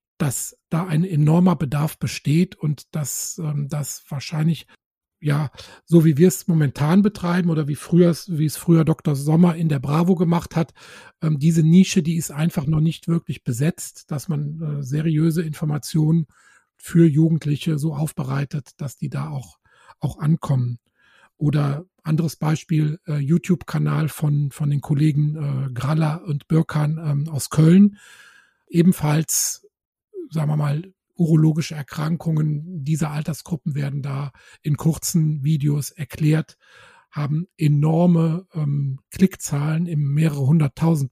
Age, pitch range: 40-59, 145-170 Hz